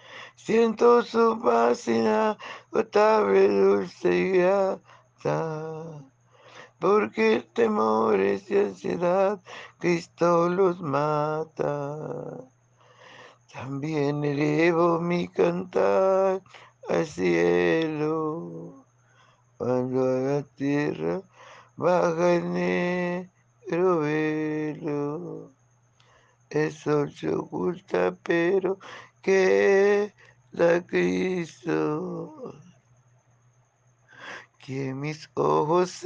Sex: male